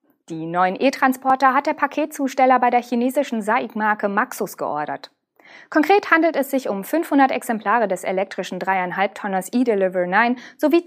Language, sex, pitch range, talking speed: German, female, 195-270 Hz, 140 wpm